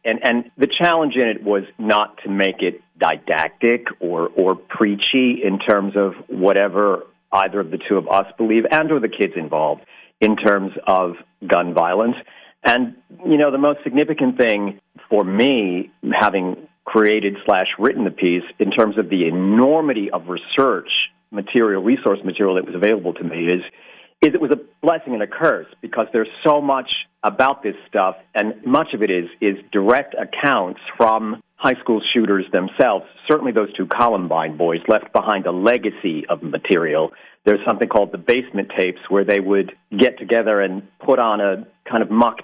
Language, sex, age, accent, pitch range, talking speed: English, male, 50-69, American, 100-130 Hz, 175 wpm